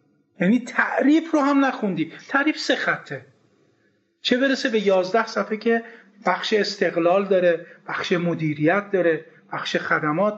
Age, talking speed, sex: 40-59, 125 wpm, male